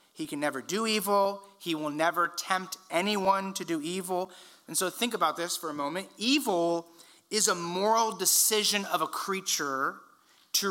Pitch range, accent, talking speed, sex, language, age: 170-220 Hz, American, 170 wpm, male, English, 40-59